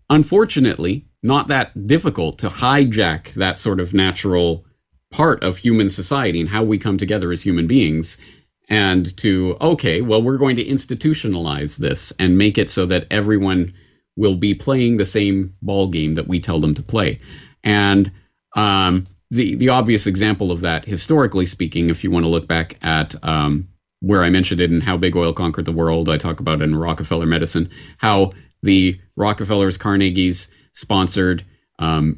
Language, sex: English, male